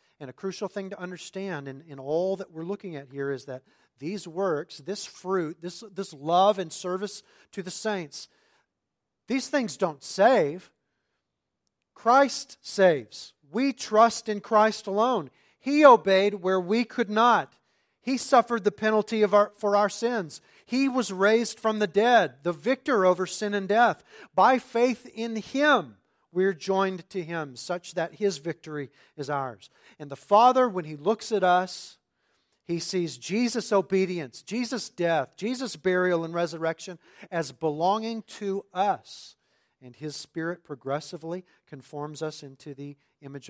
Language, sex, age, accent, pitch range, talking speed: English, male, 40-59, American, 155-215 Hz, 155 wpm